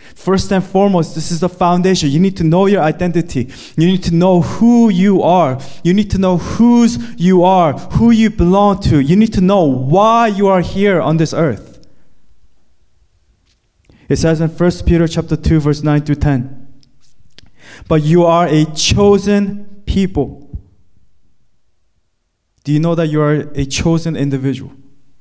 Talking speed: 160 wpm